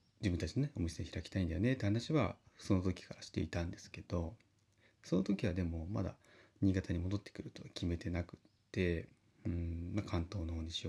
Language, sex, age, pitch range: Japanese, male, 30-49, 90-110 Hz